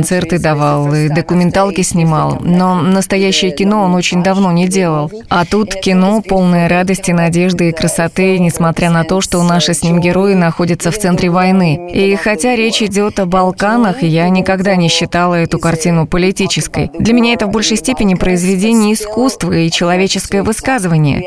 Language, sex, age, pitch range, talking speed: Russian, female, 20-39, 170-200 Hz, 160 wpm